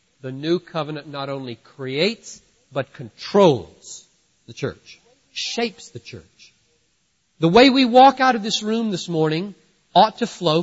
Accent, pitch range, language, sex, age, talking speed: American, 170-255 Hz, English, male, 50-69, 145 wpm